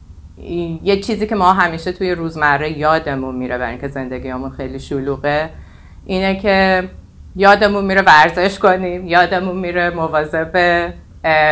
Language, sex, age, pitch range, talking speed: Persian, female, 30-49, 155-200 Hz, 125 wpm